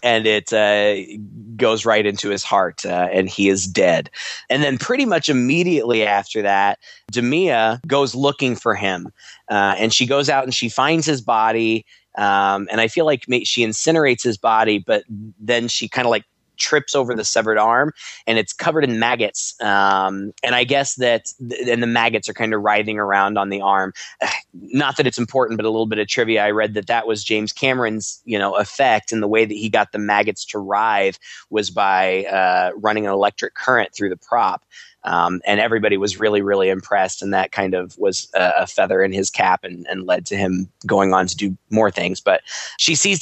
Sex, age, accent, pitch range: male, 20-39, American, 100-130 Hz